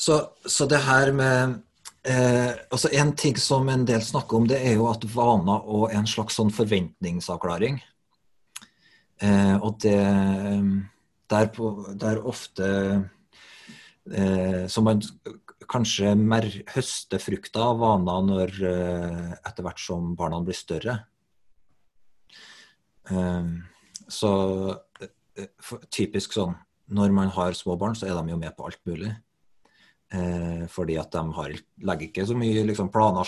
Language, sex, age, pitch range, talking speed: English, male, 30-49, 95-115 Hz, 140 wpm